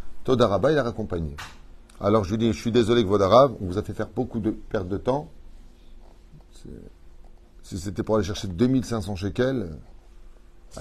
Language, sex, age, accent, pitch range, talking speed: French, male, 30-49, French, 90-125 Hz, 170 wpm